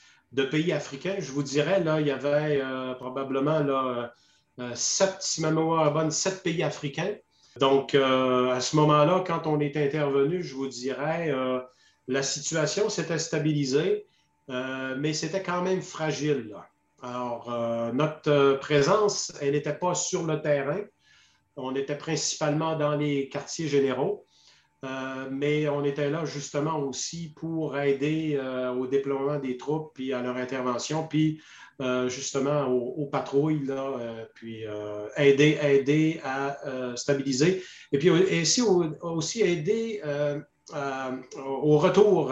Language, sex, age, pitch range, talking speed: French, male, 40-59, 130-155 Hz, 140 wpm